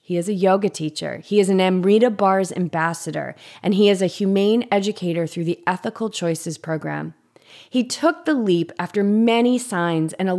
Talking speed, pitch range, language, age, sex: 180 wpm, 175-230 Hz, English, 30-49, female